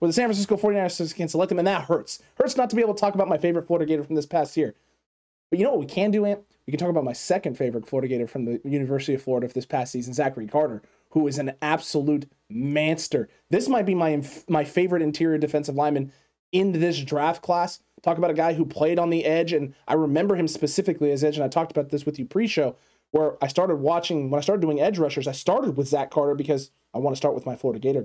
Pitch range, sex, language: 145-170 Hz, male, English